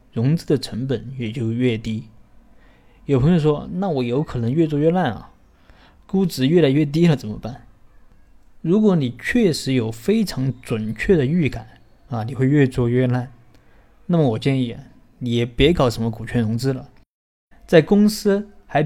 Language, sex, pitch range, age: Chinese, male, 115-155 Hz, 20-39